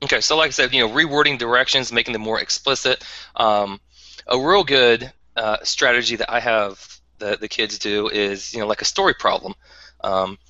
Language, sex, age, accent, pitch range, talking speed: English, male, 20-39, American, 95-115 Hz, 195 wpm